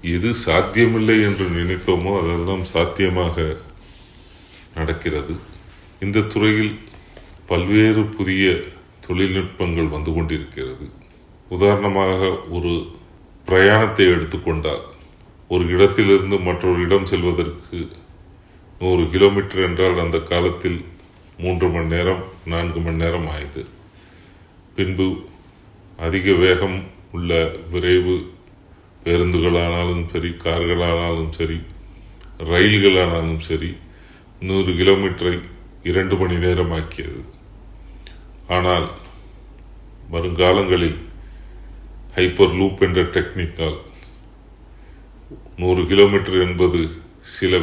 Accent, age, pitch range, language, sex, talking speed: Indian, 30-49, 85-95 Hz, English, male, 75 wpm